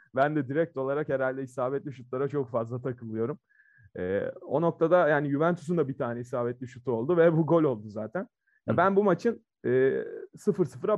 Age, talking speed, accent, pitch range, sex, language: 30-49, 175 wpm, native, 120-155 Hz, male, Turkish